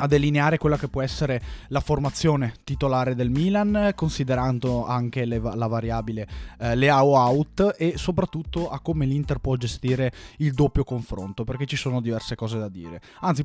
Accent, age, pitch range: native, 20-39, 120-150 Hz